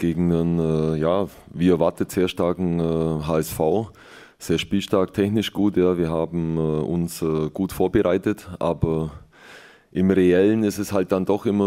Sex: male